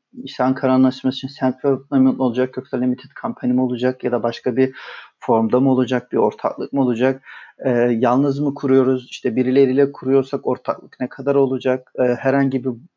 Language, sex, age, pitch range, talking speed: Turkish, male, 40-59, 125-135 Hz, 160 wpm